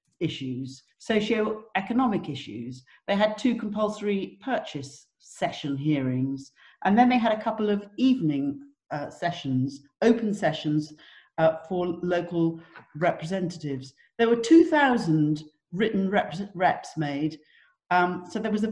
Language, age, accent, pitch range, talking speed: English, 50-69, British, 150-220 Hz, 120 wpm